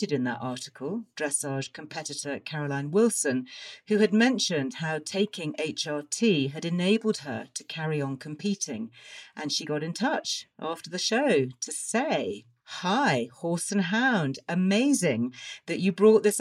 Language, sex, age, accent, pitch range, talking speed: English, female, 50-69, British, 140-190 Hz, 145 wpm